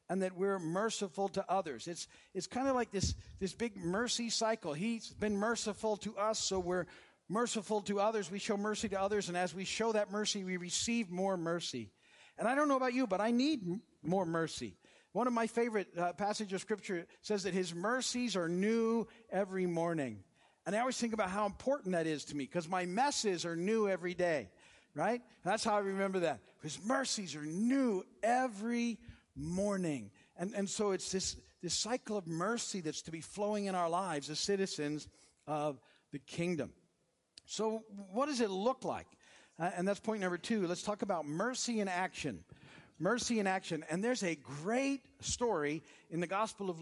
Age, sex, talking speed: 50-69, male, 190 wpm